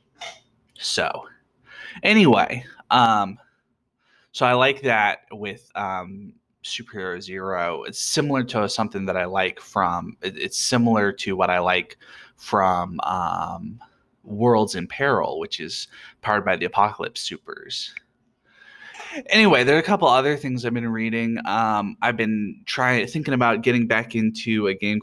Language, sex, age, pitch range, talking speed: English, male, 20-39, 95-125 Hz, 140 wpm